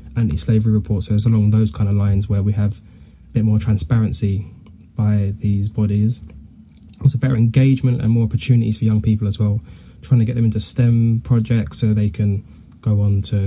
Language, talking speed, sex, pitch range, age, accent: English, 190 wpm, male, 105-120 Hz, 10-29, British